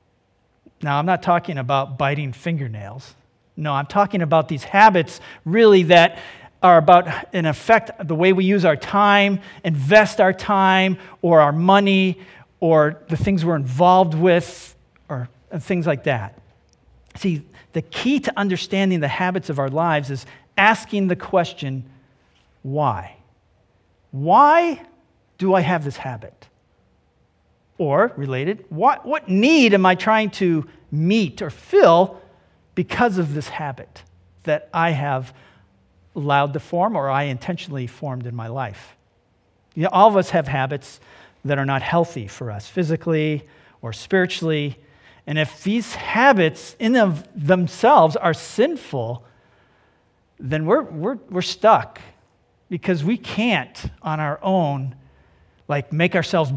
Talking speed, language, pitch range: 140 wpm, English, 135-190 Hz